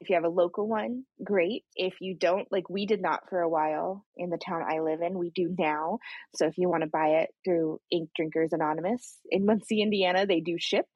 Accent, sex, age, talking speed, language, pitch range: American, female, 20-39, 235 wpm, English, 170-205 Hz